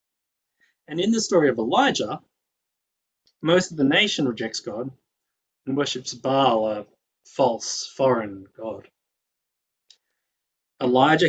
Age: 20-39